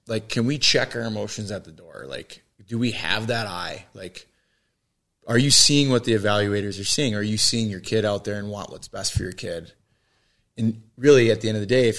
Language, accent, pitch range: English, American, 100-115 Hz